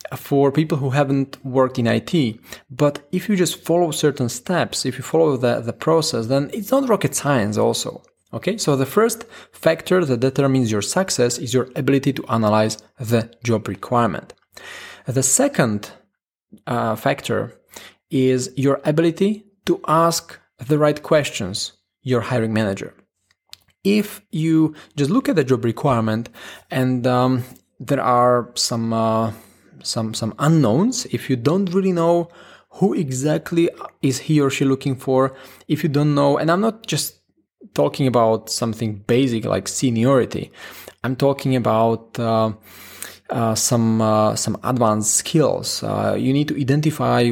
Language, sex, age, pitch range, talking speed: English, male, 20-39, 115-150 Hz, 150 wpm